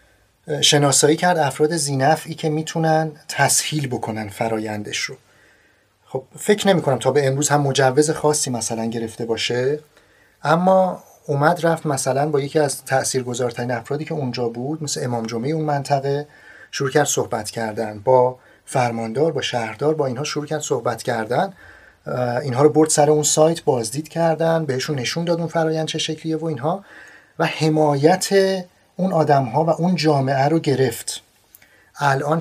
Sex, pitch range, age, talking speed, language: male, 135-165 Hz, 30-49, 150 wpm, English